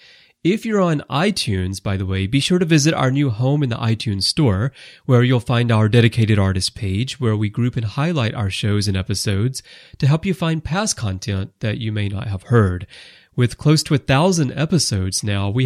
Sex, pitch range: male, 105-150 Hz